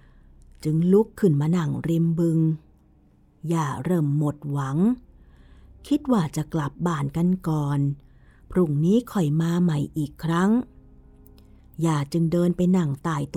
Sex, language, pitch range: female, Thai, 145-185 Hz